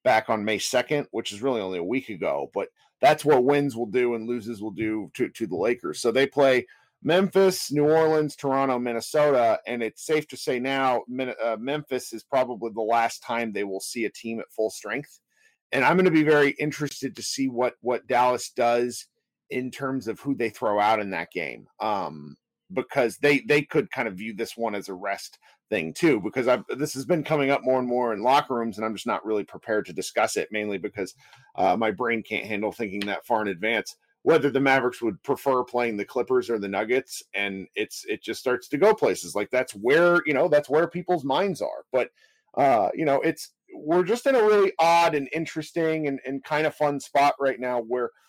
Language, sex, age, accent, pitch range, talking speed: English, male, 40-59, American, 115-150 Hz, 220 wpm